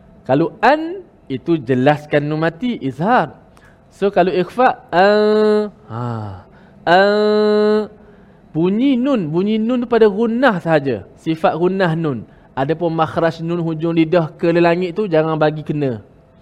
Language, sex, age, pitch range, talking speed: Malayalam, male, 20-39, 145-210 Hz, 130 wpm